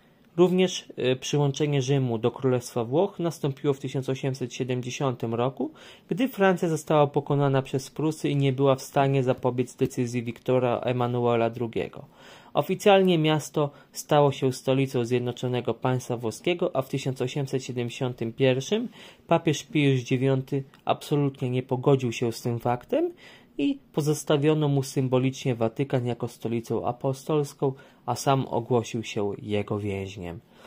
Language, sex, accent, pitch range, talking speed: Polish, male, native, 120-155 Hz, 120 wpm